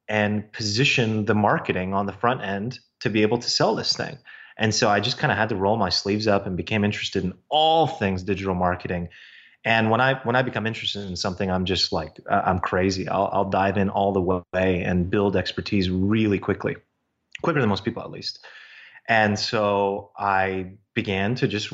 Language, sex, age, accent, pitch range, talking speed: English, male, 30-49, American, 95-115 Hz, 205 wpm